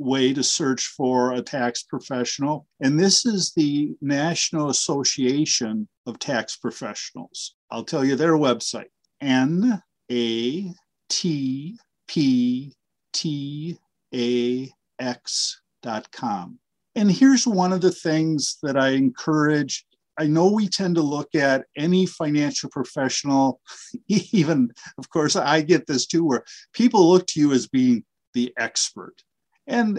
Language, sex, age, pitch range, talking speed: English, male, 50-69, 130-185 Hz, 130 wpm